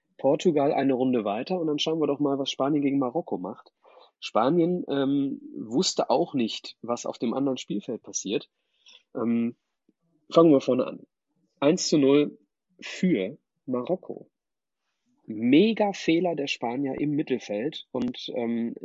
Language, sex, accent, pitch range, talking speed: German, male, German, 120-170 Hz, 140 wpm